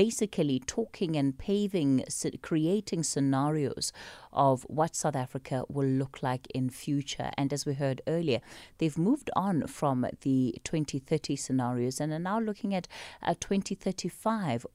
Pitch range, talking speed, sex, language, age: 145-190 Hz, 140 wpm, female, English, 30-49